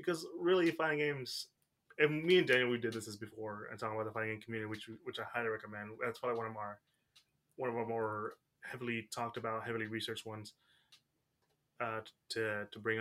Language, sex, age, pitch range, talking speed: English, male, 20-39, 110-125 Hz, 205 wpm